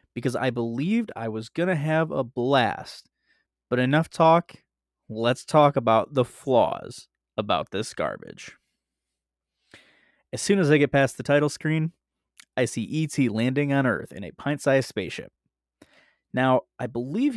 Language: English